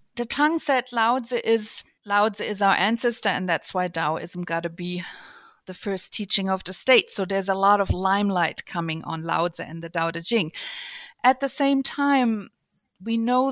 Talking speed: 185 wpm